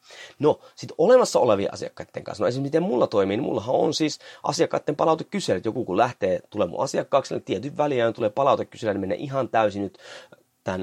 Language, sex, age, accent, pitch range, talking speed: Finnish, male, 30-49, native, 110-160 Hz, 195 wpm